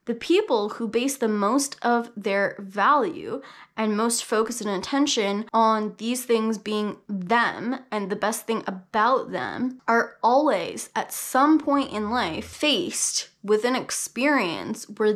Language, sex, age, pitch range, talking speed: English, female, 10-29, 200-245 Hz, 145 wpm